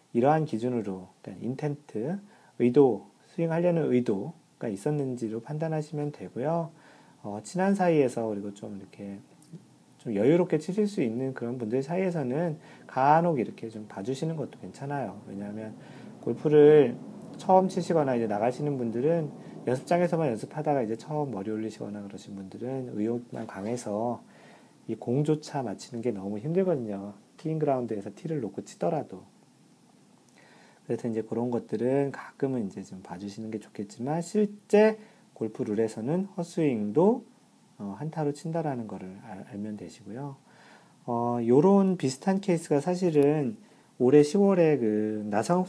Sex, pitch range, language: male, 110-165 Hz, Korean